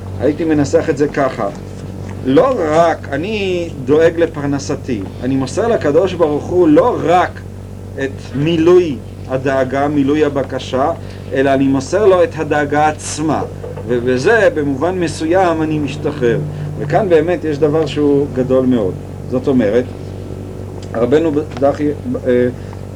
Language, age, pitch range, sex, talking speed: Hebrew, 40-59, 100-160 Hz, male, 120 wpm